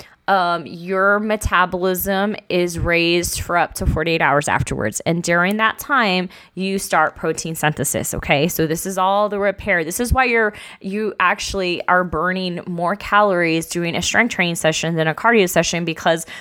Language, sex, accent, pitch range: English, female, American, 165-200 Hz